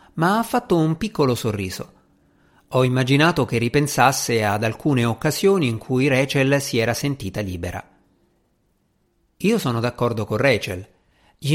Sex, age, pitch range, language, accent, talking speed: male, 50-69, 110-155 Hz, Italian, native, 135 wpm